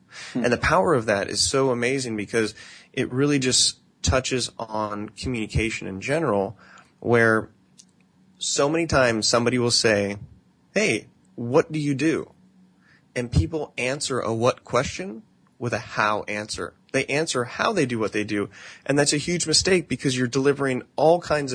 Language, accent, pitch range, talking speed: English, American, 105-135 Hz, 160 wpm